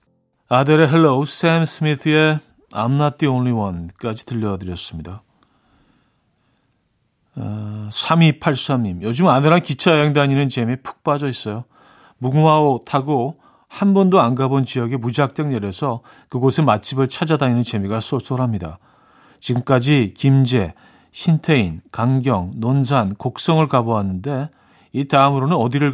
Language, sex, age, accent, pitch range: Korean, male, 40-59, native, 105-140 Hz